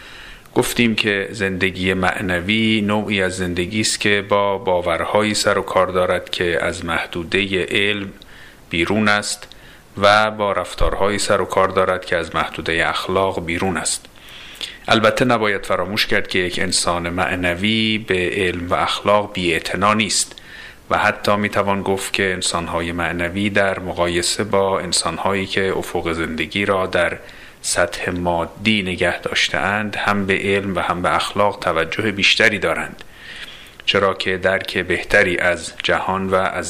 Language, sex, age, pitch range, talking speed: Persian, male, 40-59, 90-105 Hz, 140 wpm